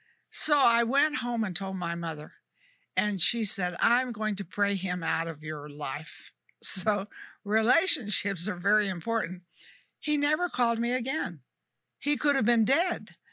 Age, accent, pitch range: 60-79, American, 190-260 Hz